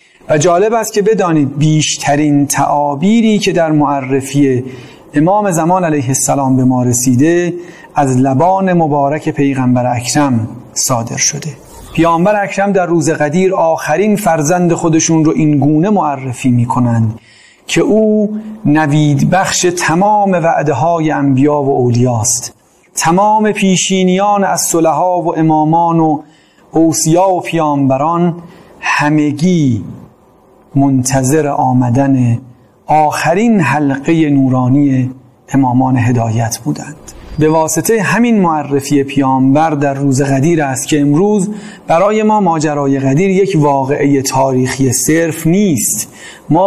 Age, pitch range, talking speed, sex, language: 40-59, 135-175 Hz, 110 wpm, male, Persian